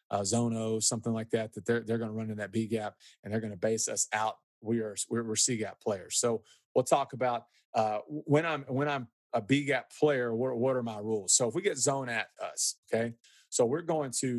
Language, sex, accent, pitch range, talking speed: English, male, American, 110-130 Hz, 245 wpm